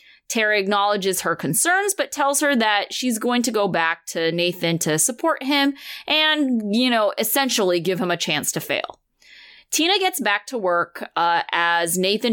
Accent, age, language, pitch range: American, 30-49, English, 175-260 Hz